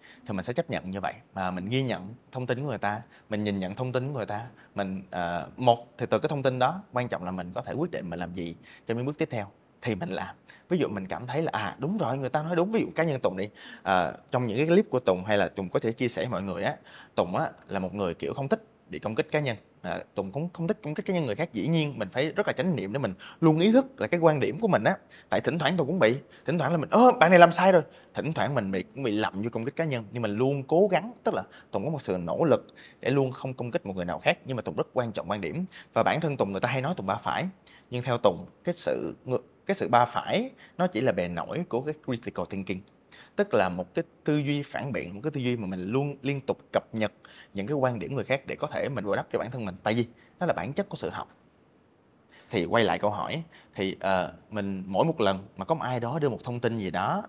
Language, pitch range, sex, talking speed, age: Vietnamese, 100-155 Hz, male, 300 wpm, 20-39